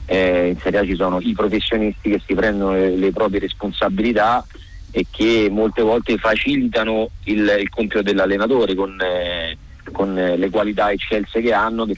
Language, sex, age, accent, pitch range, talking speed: Italian, male, 30-49, native, 95-110 Hz, 165 wpm